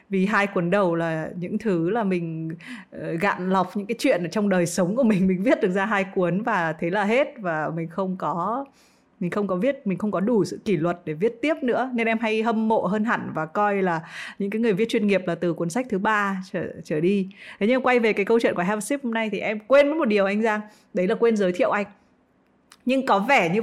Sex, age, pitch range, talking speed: female, 20-39, 180-230 Hz, 265 wpm